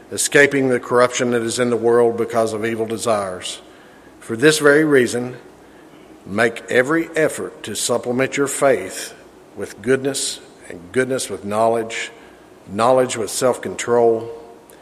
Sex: male